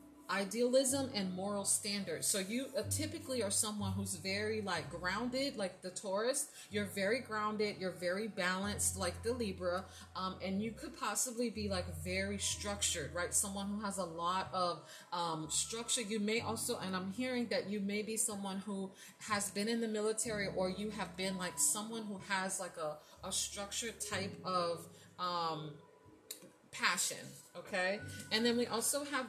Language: English